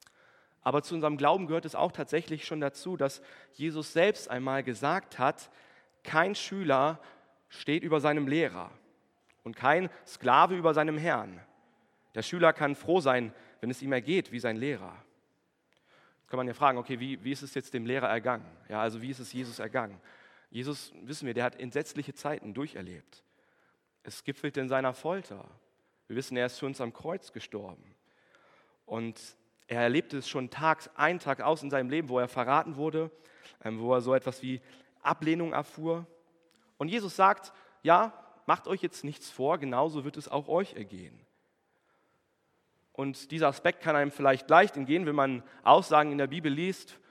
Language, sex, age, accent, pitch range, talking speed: German, male, 40-59, German, 130-165 Hz, 175 wpm